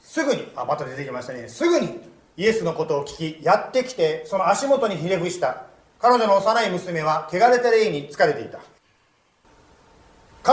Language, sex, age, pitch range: Japanese, male, 40-59, 160-235 Hz